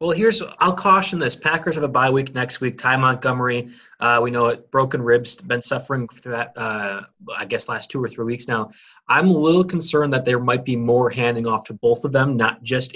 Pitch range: 120-145 Hz